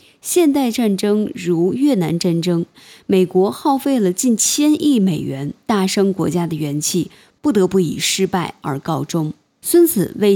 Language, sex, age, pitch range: Chinese, female, 20-39, 170-260 Hz